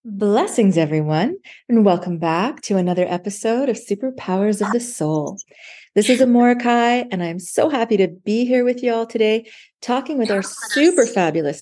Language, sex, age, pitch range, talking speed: English, female, 30-49, 155-220 Hz, 165 wpm